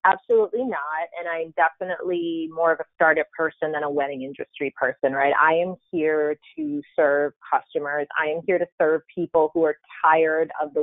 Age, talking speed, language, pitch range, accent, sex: 30-49, 185 wpm, English, 160-200 Hz, American, female